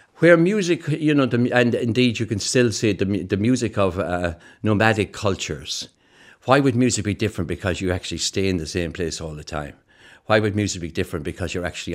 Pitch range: 90-115 Hz